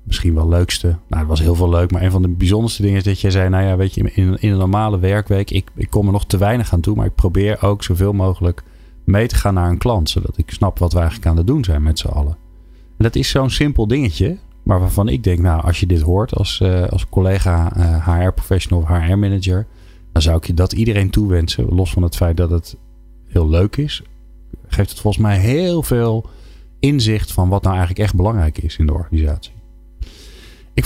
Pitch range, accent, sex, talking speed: 85-105 Hz, Dutch, male, 230 wpm